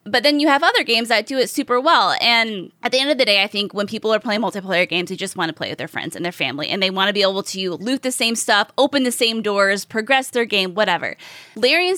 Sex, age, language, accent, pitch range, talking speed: female, 20-39, English, American, 190-250 Hz, 285 wpm